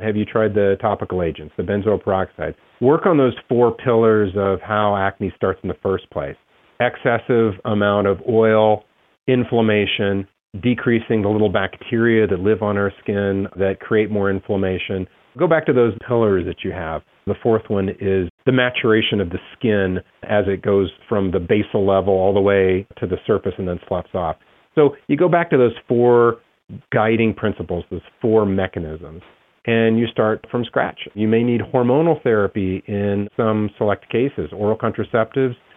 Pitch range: 95-115 Hz